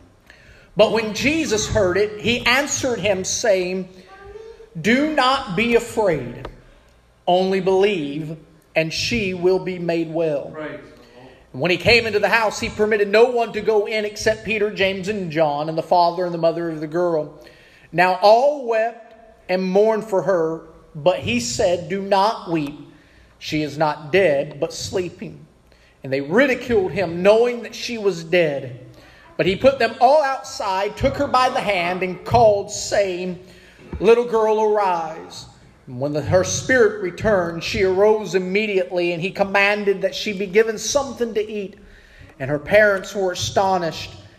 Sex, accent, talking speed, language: male, American, 160 wpm, English